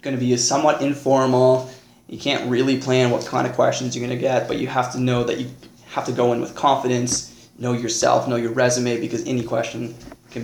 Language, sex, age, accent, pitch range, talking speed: English, male, 20-39, American, 120-145 Hz, 225 wpm